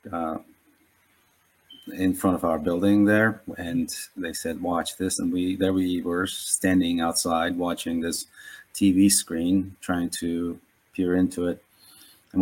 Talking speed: 140 wpm